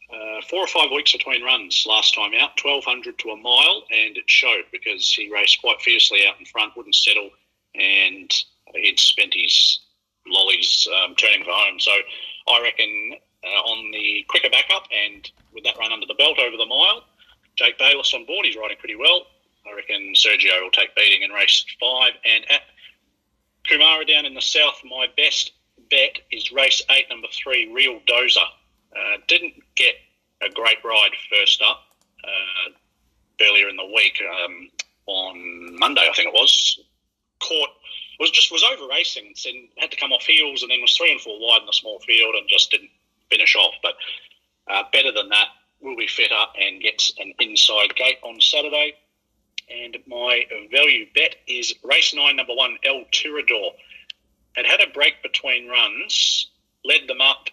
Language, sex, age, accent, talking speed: English, male, 40-59, Australian, 180 wpm